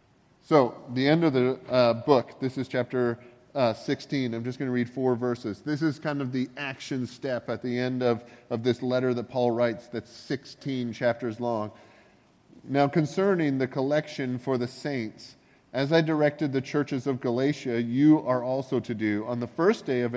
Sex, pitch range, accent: male, 120-145 Hz, American